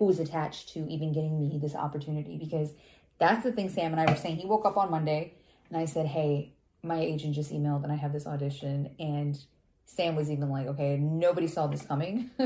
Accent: American